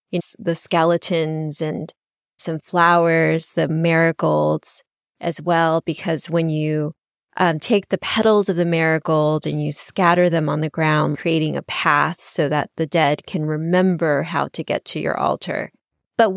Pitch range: 160-185 Hz